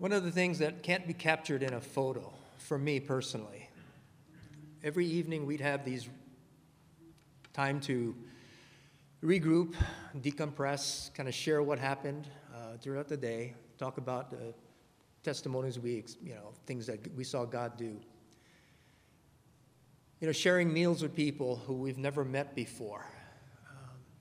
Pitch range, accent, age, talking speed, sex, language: 125-150 Hz, American, 40-59, 145 wpm, male, English